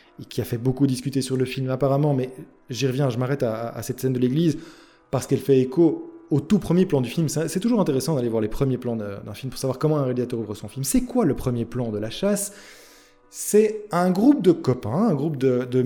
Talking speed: 250 wpm